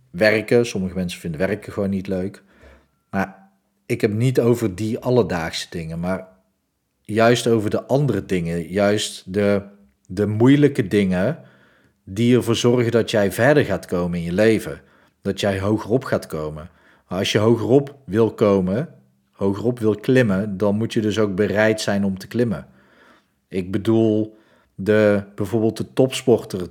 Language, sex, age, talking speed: Dutch, male, 40-59, 150 wpm